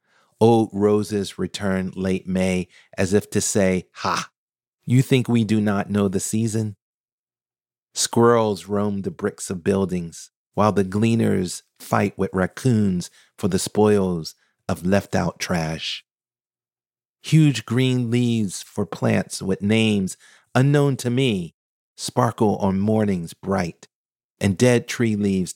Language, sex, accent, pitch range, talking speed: English, male, American, 90-115 Hz, 125 wpm